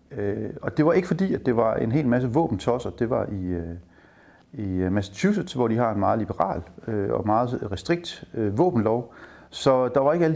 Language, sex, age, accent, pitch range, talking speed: Danish, male, 30-49, native, 95-135 Hz, 185 wpm